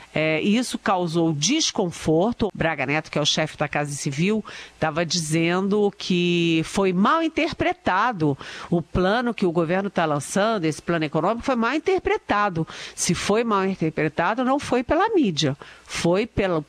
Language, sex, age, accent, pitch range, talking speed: Portuguese, female, 50-69, Brazilian, 165-220 Hz, 145 wpm